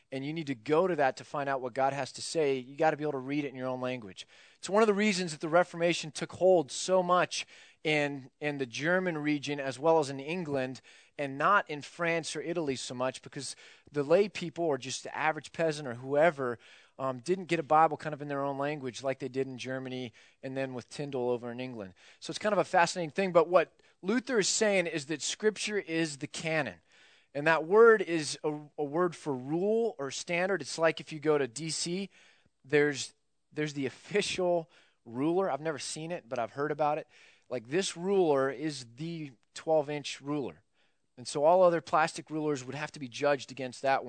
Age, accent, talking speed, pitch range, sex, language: 30-49, American, 220 wpm, 135-170 Hz, male, English